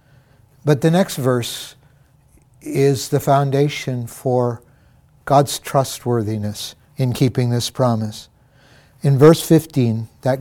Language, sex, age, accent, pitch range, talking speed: English, male, 60-79, American, 120-145 Hz, 105 wpm